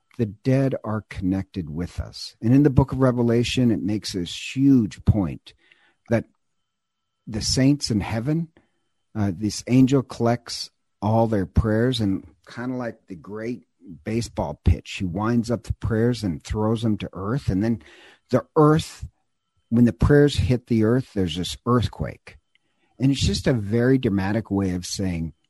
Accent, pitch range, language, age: American, 95-125 Hz, English, 50-69